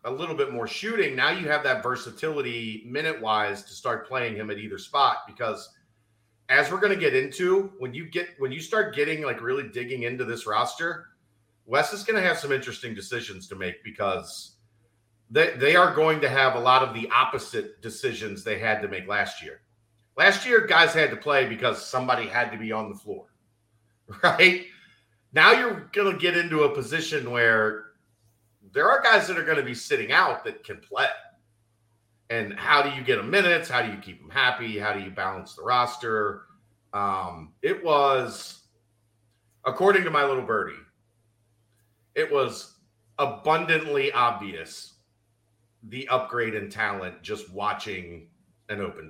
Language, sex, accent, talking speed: English, male, American, 175 wpm